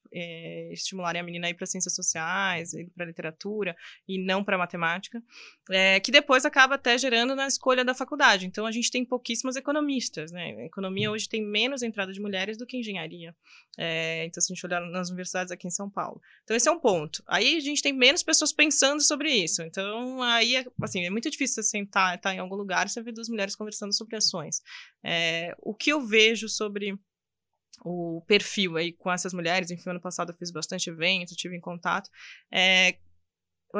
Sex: female